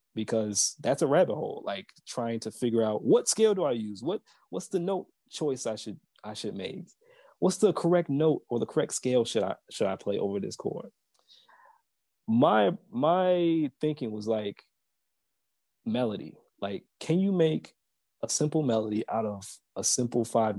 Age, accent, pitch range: 20-39, American, 115-165 Hz